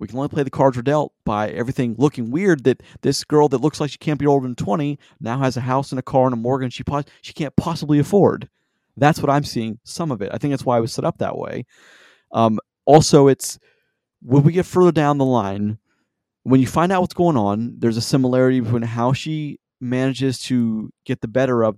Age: 30-49